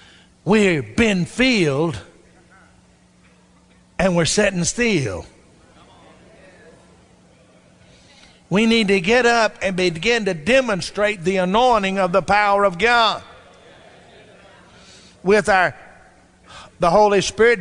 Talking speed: 95 wpm